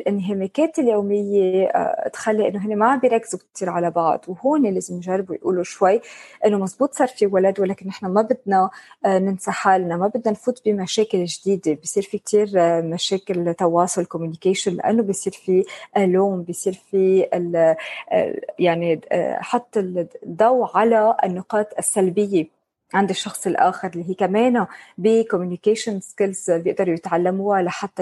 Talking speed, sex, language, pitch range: 130 wpm, female, Arabic, 185-225 Hz